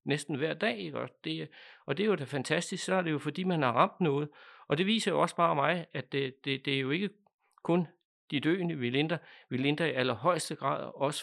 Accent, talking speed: native, 240 wpm